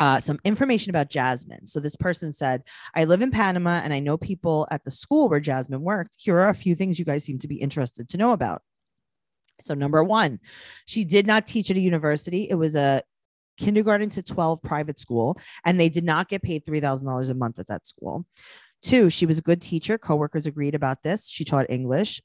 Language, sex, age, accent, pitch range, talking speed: English, female, 30-49, American, 145-195 Hz, 215 wpm